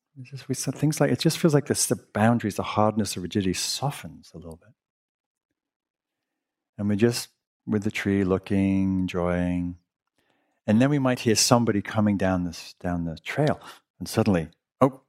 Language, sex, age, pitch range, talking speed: English, male, 50-69, 95-130 Hz, 160 wpm